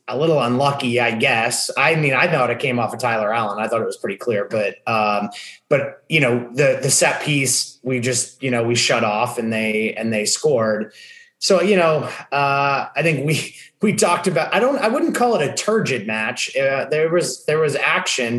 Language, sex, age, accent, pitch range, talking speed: English, male, 30-49, American, 120-150 Hz, 220 wpm